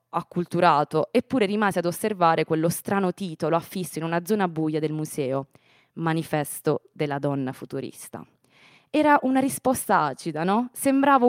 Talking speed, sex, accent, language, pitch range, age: 135 wpm, female, native, Italian, 150-200 Hz, 20-39